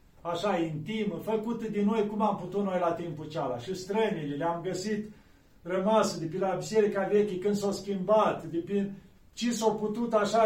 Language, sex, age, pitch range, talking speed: Romanian, male, 40-59, 160-205 Hz, 180 wpm